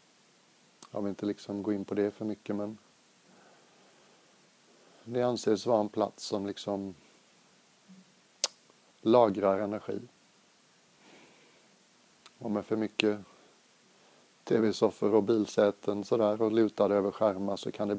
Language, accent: Swedish, native